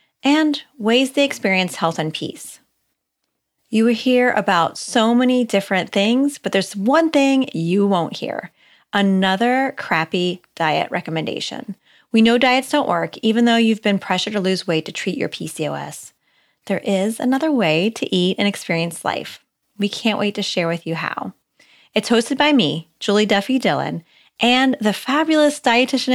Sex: female